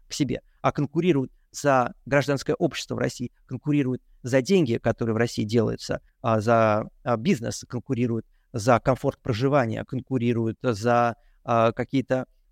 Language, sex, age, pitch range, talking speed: Russian, male, 30-49, 115-140 Hz, 120 wpm